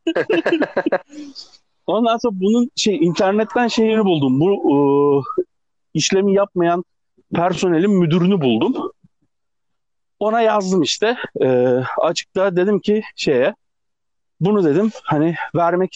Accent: native